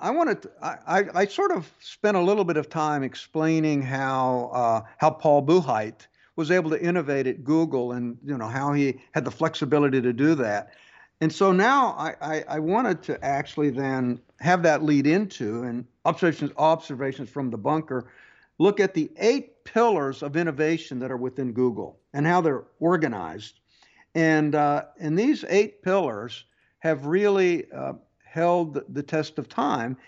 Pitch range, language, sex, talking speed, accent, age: 135-180 Hz, English, male, 170 wpm, American, 60-79